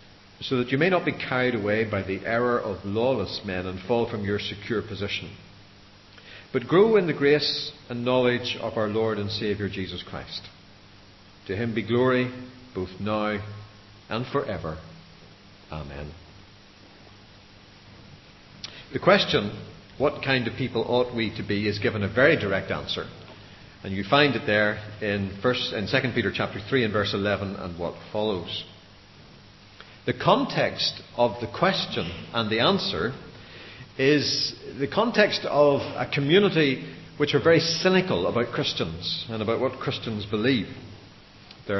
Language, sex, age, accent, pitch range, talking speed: English, male, 50-69, Irish, 100-125 Hz, 145 wpm